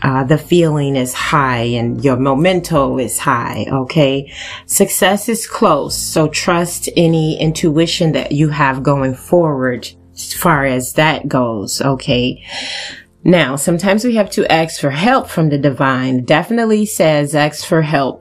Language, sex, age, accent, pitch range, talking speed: English, female, 30-49, American, 135-170 Hz, 150 wpm